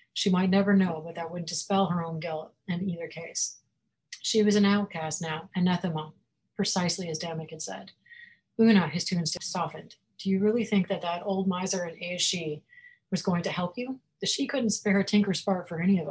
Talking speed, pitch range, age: 200 wpm, 165-200 Hz, 30-49